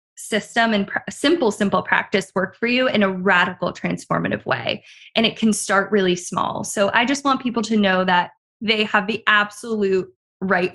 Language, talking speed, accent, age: English, 180 wpm, American, 20-39